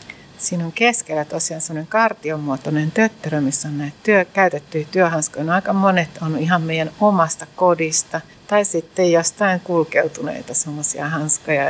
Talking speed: 140 wpm